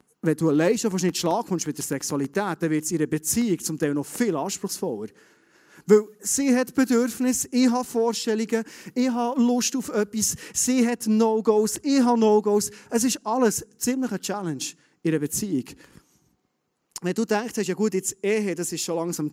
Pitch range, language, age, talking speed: 150-215 Hz, German, 30-49, 185 wpm